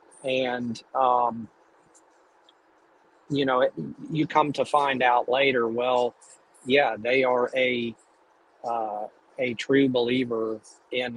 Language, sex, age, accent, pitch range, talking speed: English, male, 40-59, American, 110-125 Hz, 115 wpm